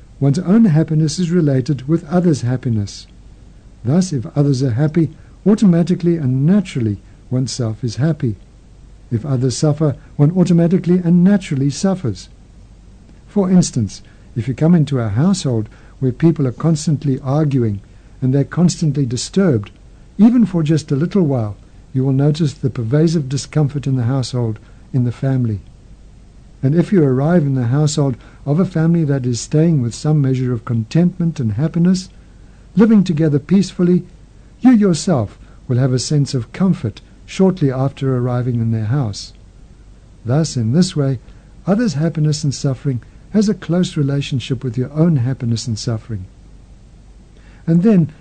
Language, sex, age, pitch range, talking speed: English, male, 60-79, 115-165 Hz, 150 wpm